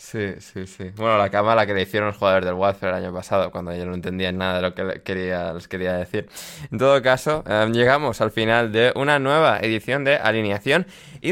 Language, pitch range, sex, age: Spanish, 105-135 Hz, male, 20-39